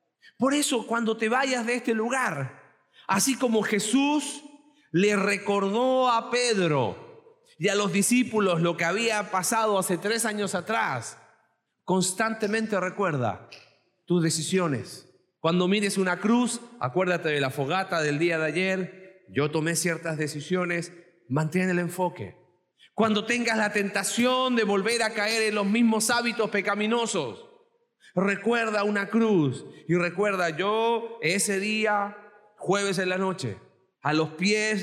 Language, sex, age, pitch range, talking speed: Spanish, male, 40-59, 175-230 Hz, 135 wpm